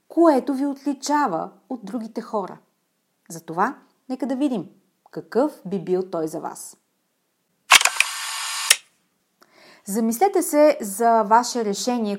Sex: female